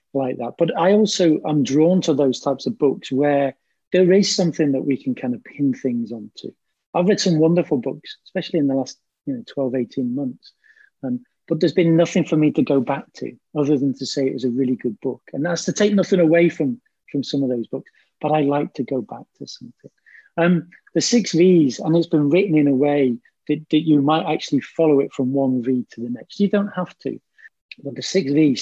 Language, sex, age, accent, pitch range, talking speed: English, male, 40-59, British, 135-175 Hz, 230 wpm